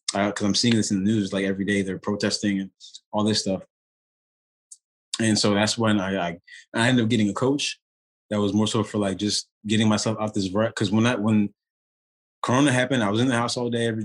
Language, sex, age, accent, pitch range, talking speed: English, male, 20-39, American, 100-115 Hz, 230 wpm